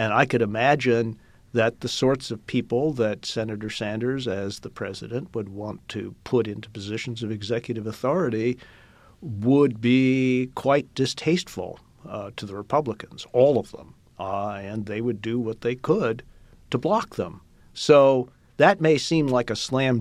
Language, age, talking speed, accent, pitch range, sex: English, 50-69, 160 wpm, American, 110-130 Hz, male